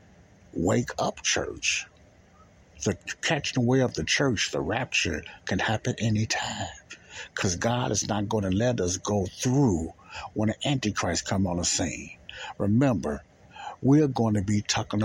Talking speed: 150 wpm